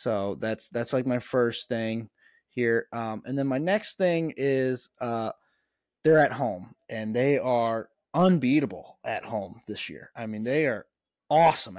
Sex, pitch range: male, 110-130 Hz